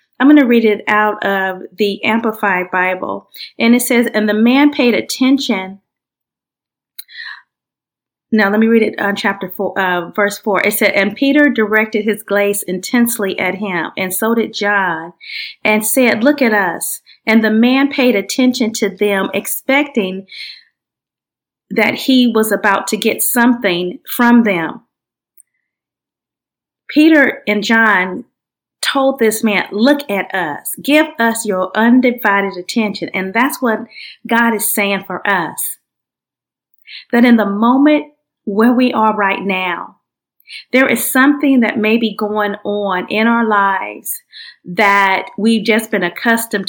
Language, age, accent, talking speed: English, 40-59, American, 145 wpm